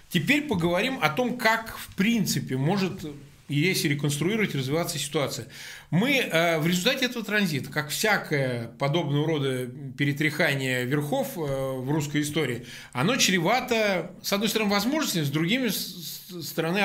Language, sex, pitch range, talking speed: Russian, male, 145-195 Hz, 130 wpm